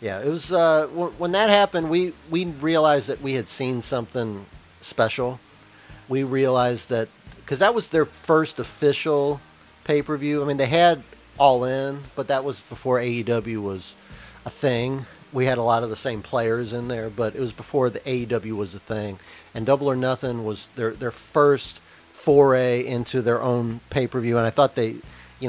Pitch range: 115-160 Hz